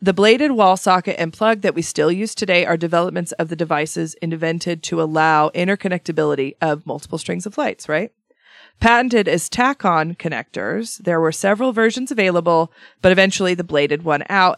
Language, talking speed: English, 170 wpm